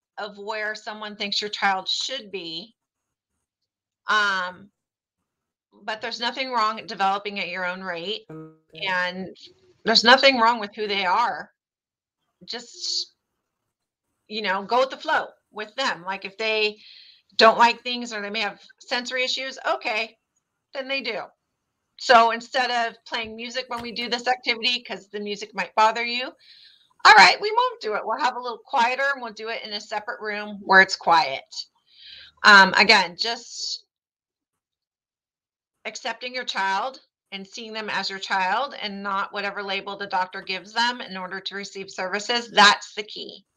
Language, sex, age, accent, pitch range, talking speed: English, female, 40-59, American, 195-240 Hz, 165 wpm